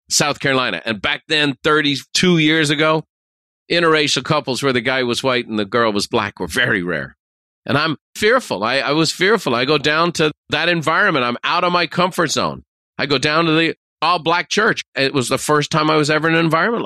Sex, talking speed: male, 215 wpm